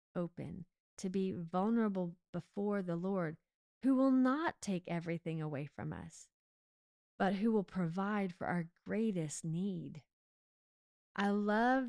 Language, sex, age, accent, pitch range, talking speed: English, female, 30-49, American, 165-200 Hz, 125 wpm